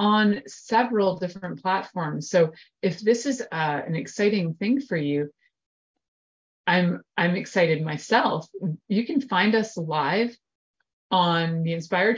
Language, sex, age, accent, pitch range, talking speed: English, female, 30-49, American, 165-210 Hz, 130 wpm